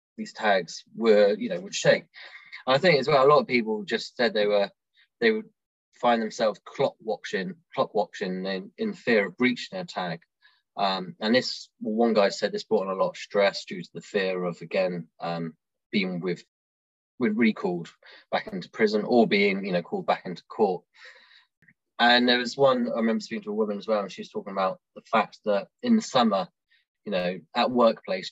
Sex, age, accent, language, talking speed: male, 20-39, British, English, 205 wpm